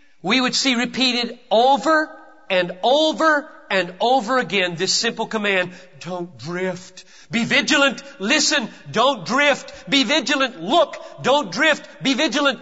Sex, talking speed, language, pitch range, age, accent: male, 130 wpm, Hindi, 185-280 Hz, 40-59, American